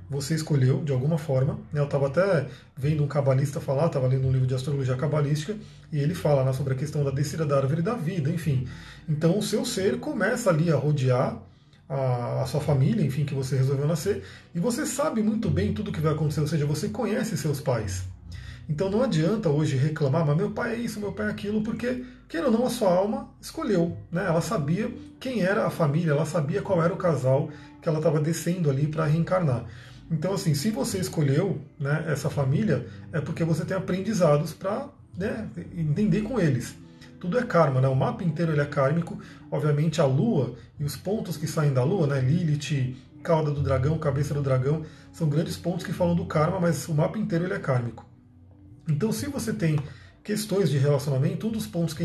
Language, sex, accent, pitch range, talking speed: Portuguese, male, Brazilian, 140-185 Hz, 210 wpm